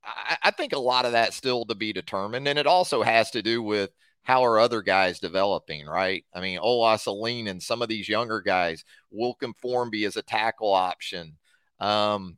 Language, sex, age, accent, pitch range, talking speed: English, male, 30-49, American, 100-125 Hz, 195 wpm